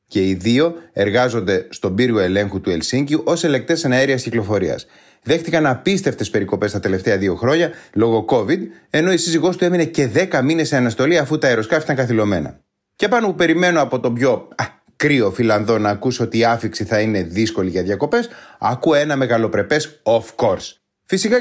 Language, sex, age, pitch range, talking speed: Greek, male, 30-49, 115-160 Hz, 175 wpm